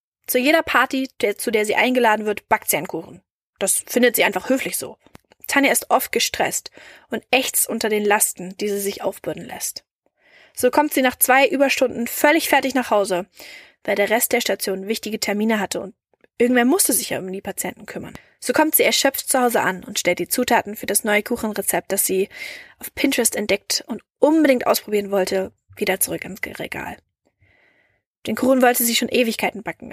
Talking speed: 190 wpm